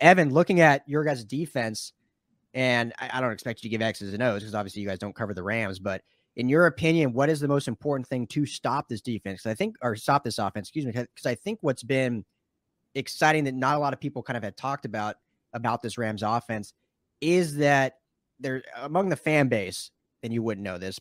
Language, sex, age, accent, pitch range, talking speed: English, male, 30-49, American, 110-145 Hz, 225 wpm